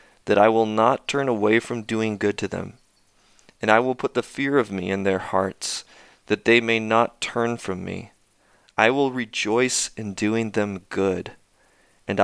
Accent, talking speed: American, 180 wpm